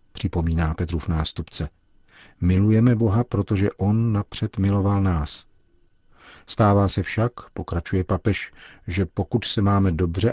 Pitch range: 85-100 Hz